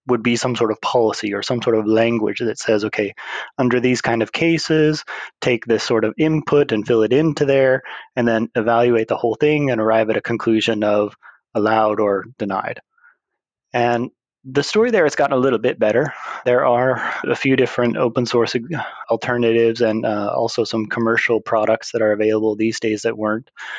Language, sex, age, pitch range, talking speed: English, male, 20-39, 110-125 Hz, 190 wpm